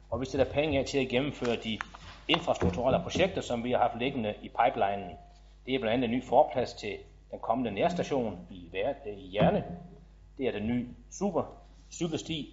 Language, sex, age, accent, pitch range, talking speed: Danish, male, 30-49, native, 110-155 Hz, 175 wpm